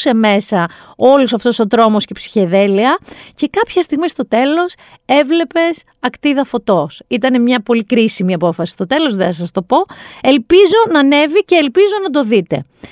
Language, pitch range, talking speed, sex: Greek, 210-315 Hz, 170 wpm, female